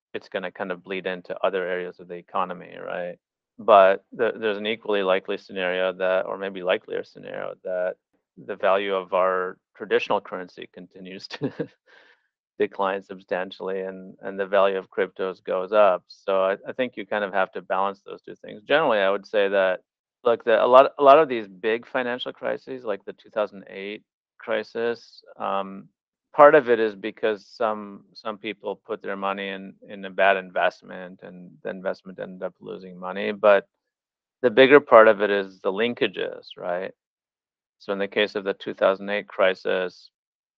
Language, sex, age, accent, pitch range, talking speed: English, male, 30-49, American, 95-105 Hz, 175 wpm